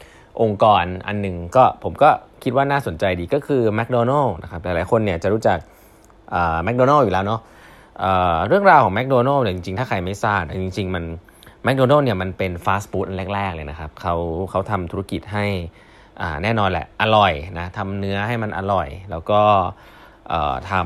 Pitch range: 90-120 Hz